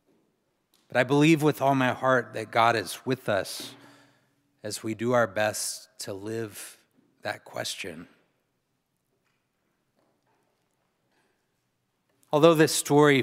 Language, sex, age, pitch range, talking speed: English, male, 30-49, 110-140 Hz, 110 wpm